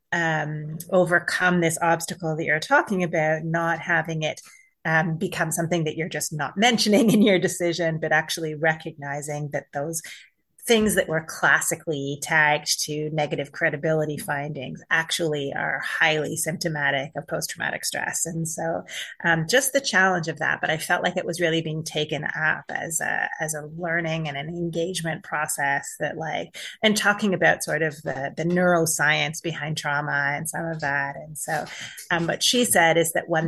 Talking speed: 170 wpm